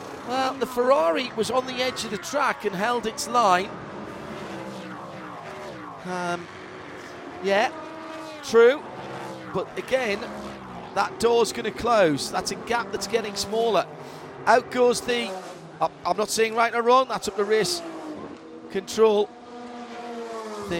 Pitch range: 185-240 Hz